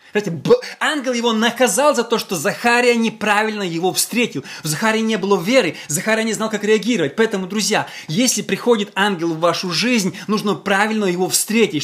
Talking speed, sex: 160 wpm, male